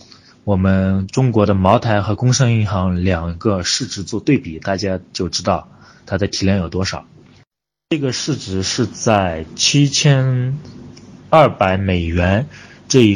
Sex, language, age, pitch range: male, Chinese, 20-39, 95-120 Hz